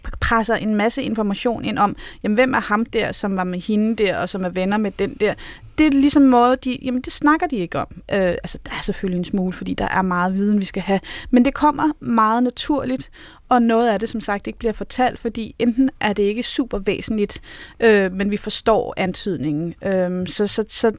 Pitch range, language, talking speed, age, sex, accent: 195-235 Hz, Danish, 215 wpm, 30-49, female, native